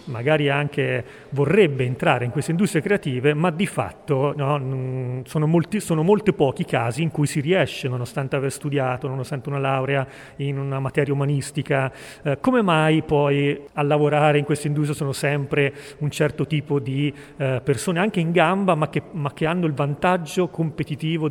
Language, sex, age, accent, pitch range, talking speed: Italian, male, 40-59, native, 135-160 Hz, 170 wpm